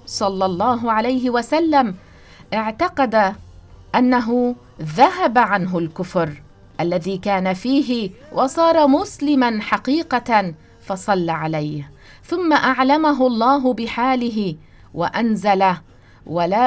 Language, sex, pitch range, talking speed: English, female, 185-275 Hz, 85 wpm